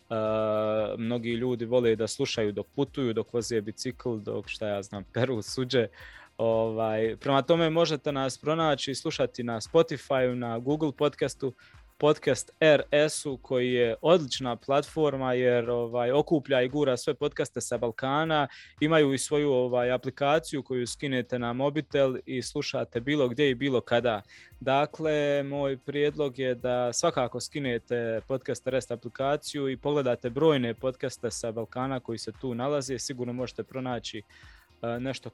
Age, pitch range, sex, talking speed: 20-39, 115-140 Hz, male, 145 wpm